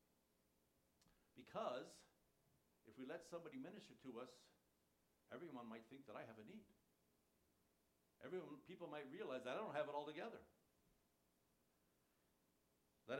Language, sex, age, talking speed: English, male, 60-79, 125 wpm